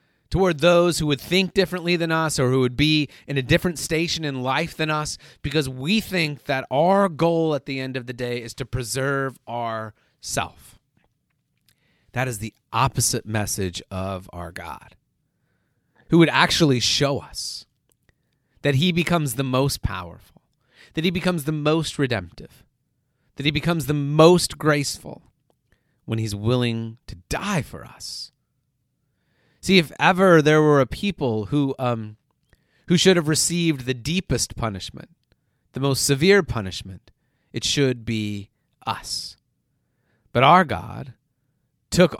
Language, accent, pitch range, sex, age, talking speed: English, American, 115-160 Hz, male, 30-49, 145 wpm